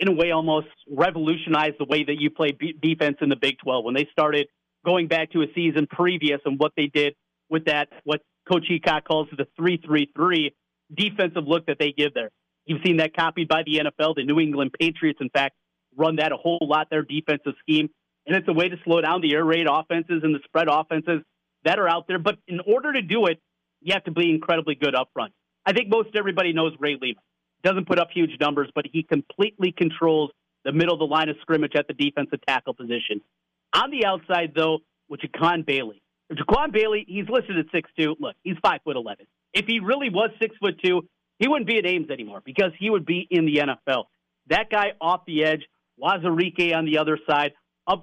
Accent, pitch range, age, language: American, 150-180 Hz, 30-49, English